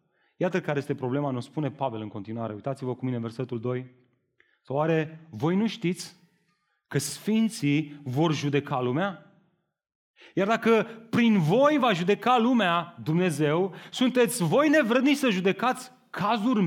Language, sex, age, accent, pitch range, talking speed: Romanian, male, 30-49, native, 145-215 Hz, 140 wpm